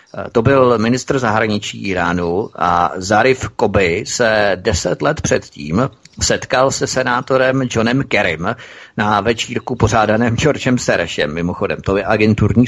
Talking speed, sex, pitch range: 125 wpm, male, 105-130 Hz